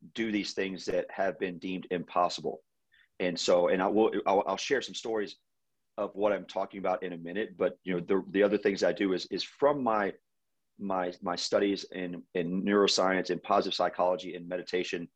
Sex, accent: male, American